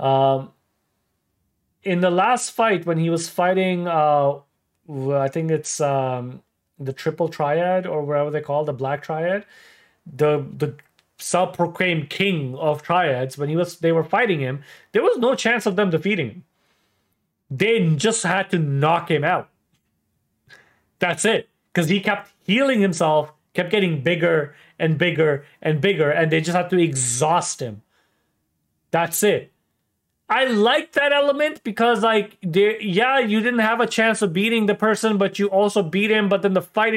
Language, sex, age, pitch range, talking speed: English, male, 30-49, 160-215 Hz, 165 wpm